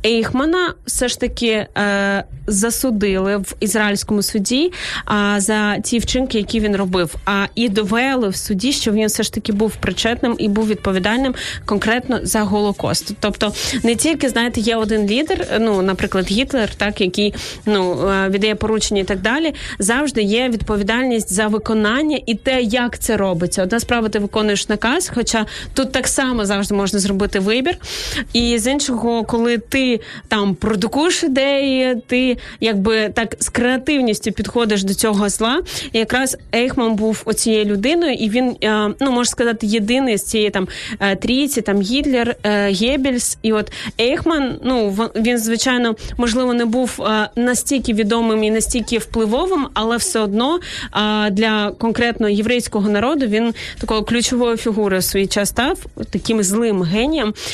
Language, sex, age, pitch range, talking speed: Ukrainian, female, 20-39, 210-245 Hz, 150 wpm